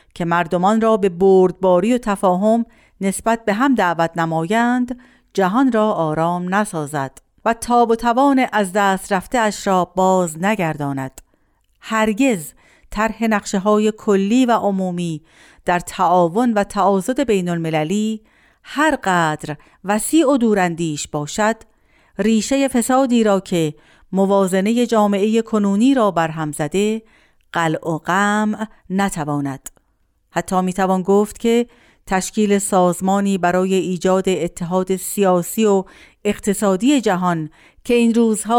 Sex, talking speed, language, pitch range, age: female, 120 wpm, Persian, 170-220 Hz, 50-69